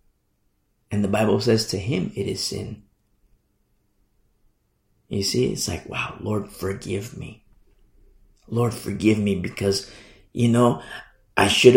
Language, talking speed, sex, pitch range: English, 130 wpm, male, 105-140 Hz